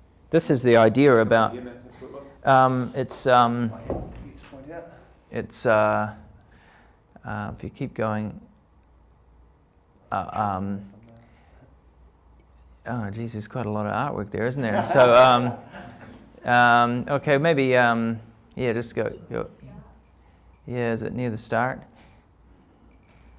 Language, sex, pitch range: English, male, 110-135 Hz